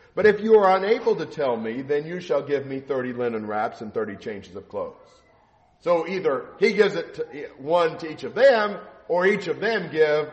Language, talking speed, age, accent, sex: English, 210 wpm, 50-69, American, male